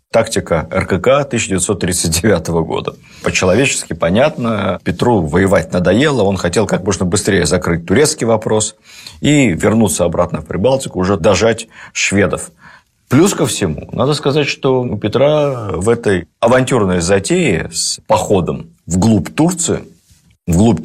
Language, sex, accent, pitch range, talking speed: Russian, male, native, 85-135 Hz, 120 wpm